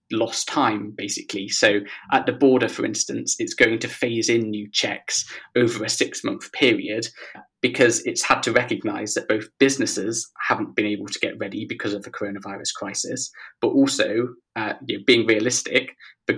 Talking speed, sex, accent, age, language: 170 wpm, male, British, 20-39, English